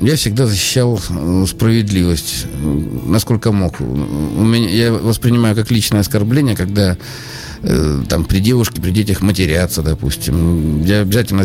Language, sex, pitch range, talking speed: Russian, male, 95-120 Hz, 110 wpm